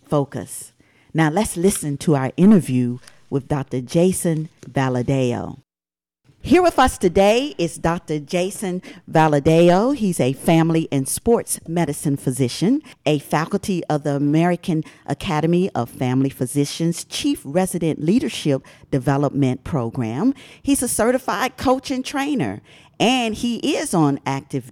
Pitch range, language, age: 140-205 Hz, English, 50-69